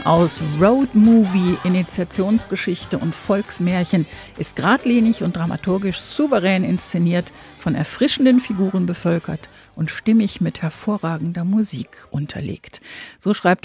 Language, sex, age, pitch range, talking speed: German, female, 50-69, 160-210 Hz, 105 wpm